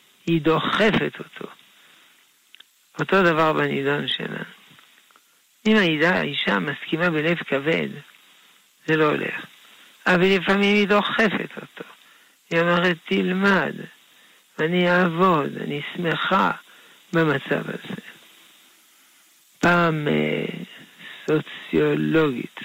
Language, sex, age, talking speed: Hebrew, male, 60-79, 85 wpm